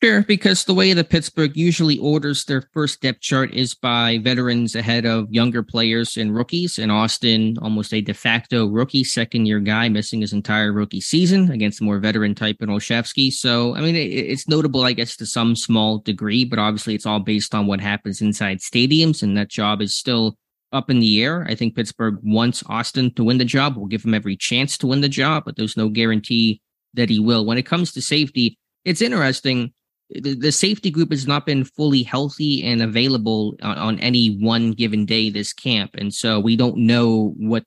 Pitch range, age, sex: 110-130 Hz, 20-39, male